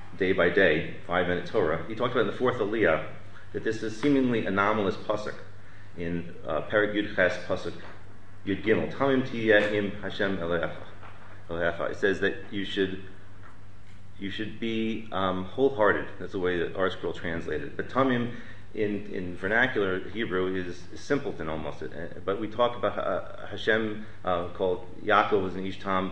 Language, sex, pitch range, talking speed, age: English, male, 95-110 Hz, 150 wpm, 30-49